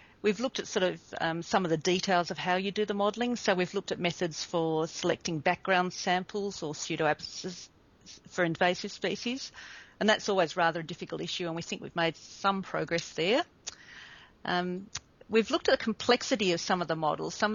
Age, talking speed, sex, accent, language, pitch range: 50-69, 195 wpm, female, Australian, English, 160-190 Hz